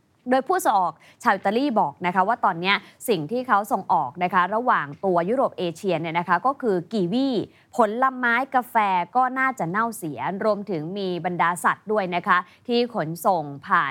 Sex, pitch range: female, 170-225 Hz